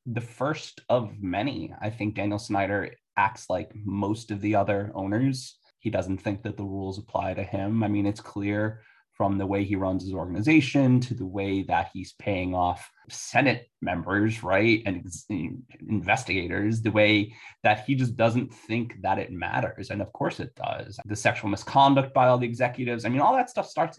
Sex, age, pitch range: male, 20-39, 100-125 Hz